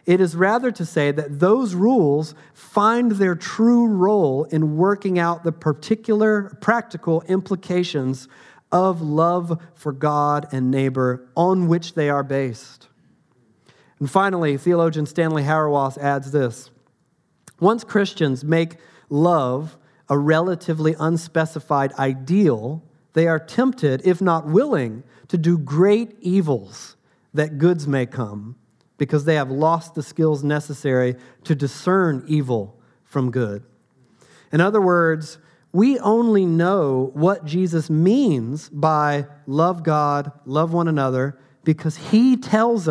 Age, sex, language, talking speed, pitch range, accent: 40-59, male, English, 125 wpm, 140-180 Hz, American